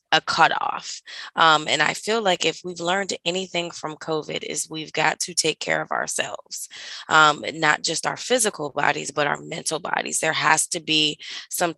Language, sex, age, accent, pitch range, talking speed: English, female, 20-39, American, 155-180 Hz, 185 wpm